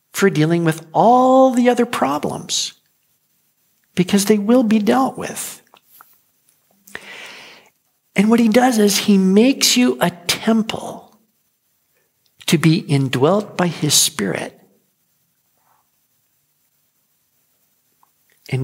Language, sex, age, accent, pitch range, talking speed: English, male, 60-79, American, 160-230 Hz, 95 wpm